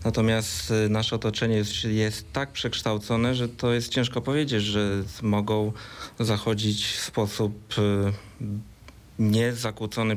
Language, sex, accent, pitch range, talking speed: Polish, male, native, 105-120 Hz, 105 wpm